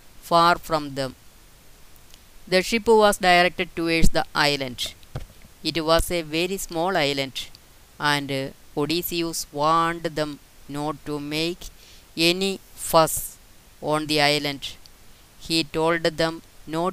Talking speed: 115 wpm